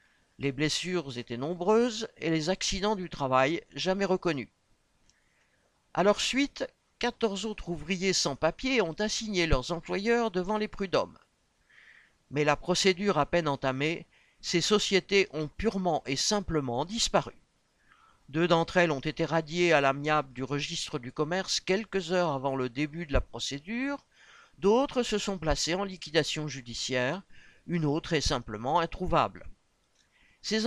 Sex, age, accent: male, 50-69, French